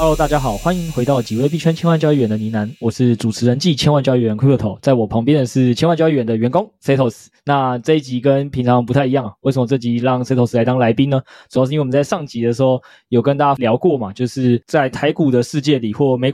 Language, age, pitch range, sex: Chinese, 20-39, 120-145 Hz, male